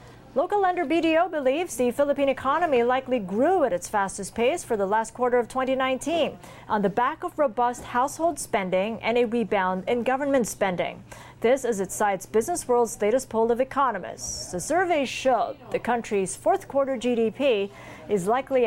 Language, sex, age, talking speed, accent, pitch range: English, female, 40-59, 165 wpm, American, 195-260 Hz